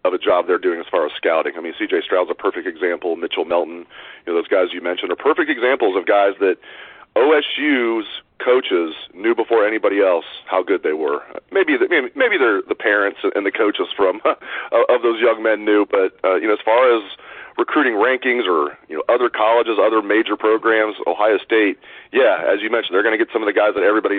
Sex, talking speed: male, 210 wpm